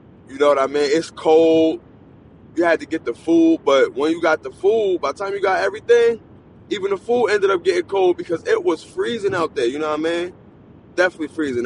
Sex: male